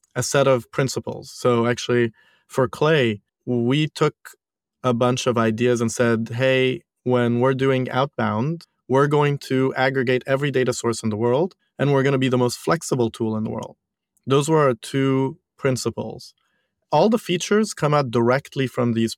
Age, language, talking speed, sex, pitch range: 30-49, English, 175 wpm, male, 115-135 Hz